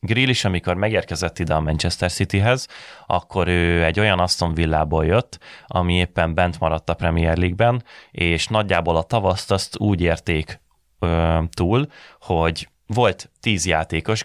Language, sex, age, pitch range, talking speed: Hungarian, male, 30-49, 80-95 Hz, 145 wpm